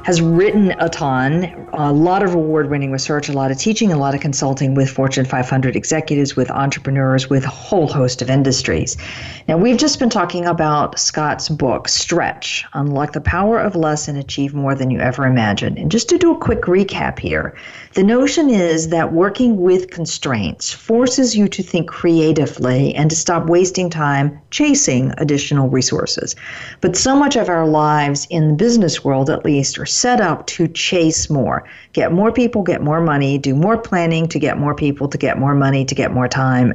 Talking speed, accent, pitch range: 190 wpm, American, 140-185 Hz